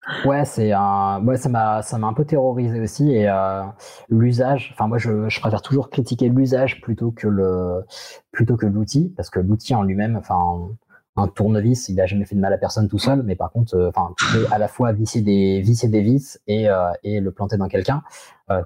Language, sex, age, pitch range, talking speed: French, male, 20-39, 100-130 Hz, 220 wpm